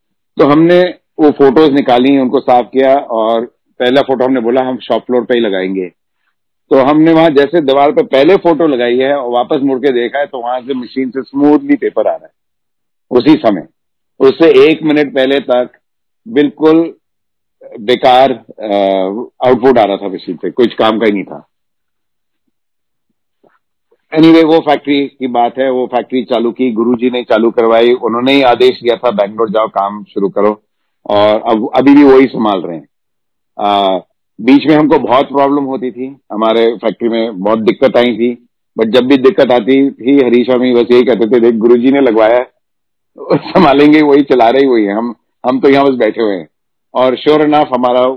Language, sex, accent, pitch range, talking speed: Hindi, male, native, 115-140 Hz, 180 wpm